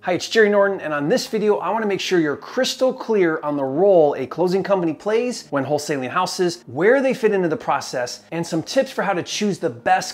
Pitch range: 135-190 Hz